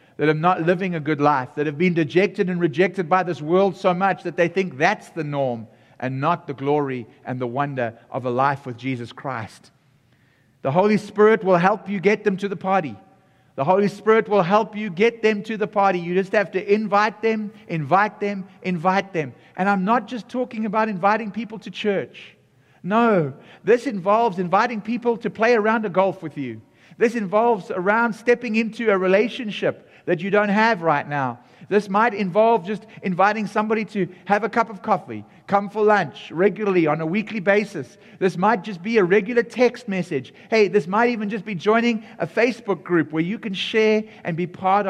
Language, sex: English, male